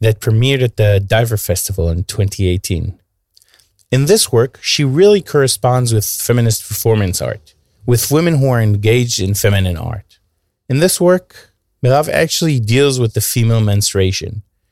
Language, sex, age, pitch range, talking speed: Hebrew, male, 30-49, 100-135 Hz, 145 wpm